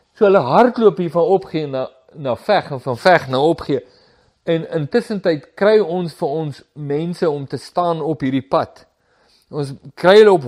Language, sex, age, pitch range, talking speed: English, male, 50-69, 150-205 Hz, 190 wpm